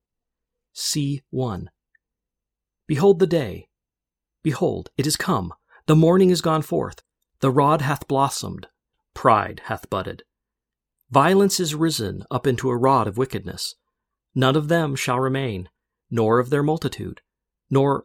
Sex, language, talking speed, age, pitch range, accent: male, English, 135 wpm, 40-59, 110-150 Hz, American